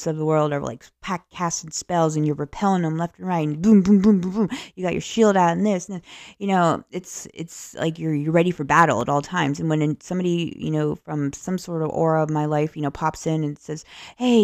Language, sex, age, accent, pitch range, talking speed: English, female, 20-39, American, 150-200 Hz, 260 wpm